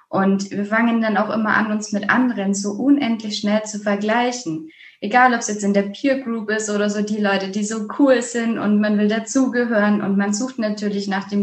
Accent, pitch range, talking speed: German, 200-250 Hz, 220 wpm